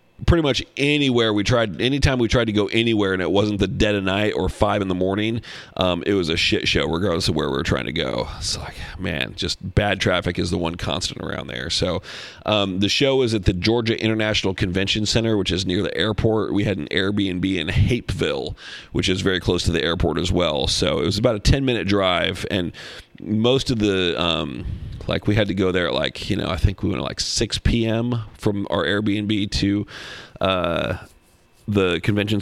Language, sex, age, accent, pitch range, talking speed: English, male, 40-59, American, 90-110 Hz, 220 wpm